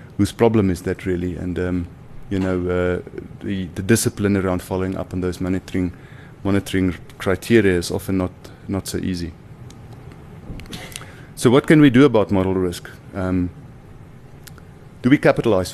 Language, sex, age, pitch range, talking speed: English, male, 30-49, 95-125 Hz, 150 wpm